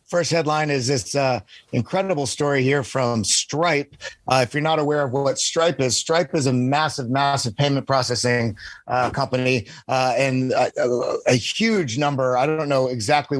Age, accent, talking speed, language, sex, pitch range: 30-49, American, 175 wpm, English, male, 125-150 Hz